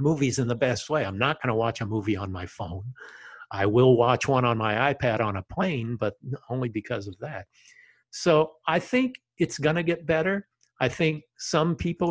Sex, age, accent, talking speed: male, 50-69, American, 210 wpm